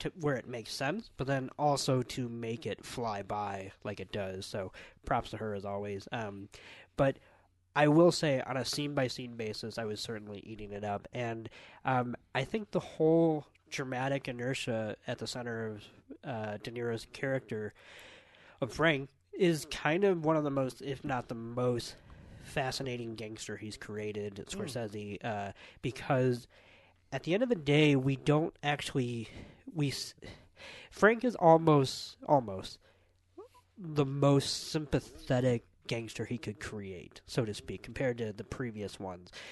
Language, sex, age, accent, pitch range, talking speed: English, male, 20-39, American, 105-145 Hz, 155 wpm